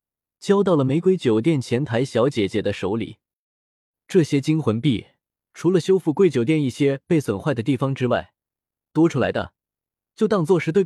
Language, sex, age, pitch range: Chinese, male, 20-39, 115-170 Hz